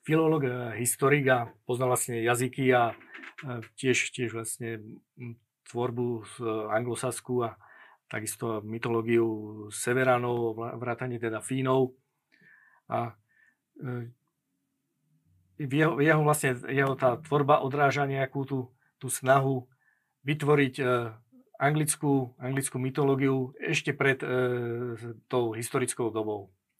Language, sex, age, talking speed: Slovak, male, 50-69, 95 wpm